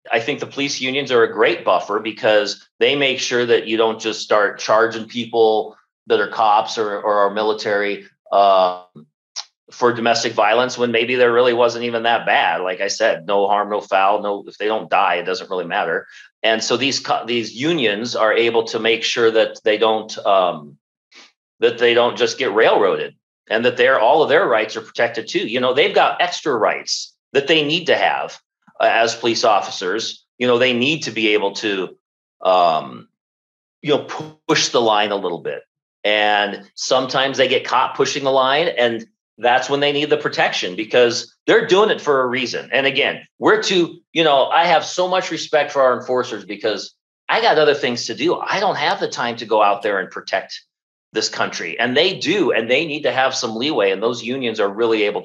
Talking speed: 205 wpm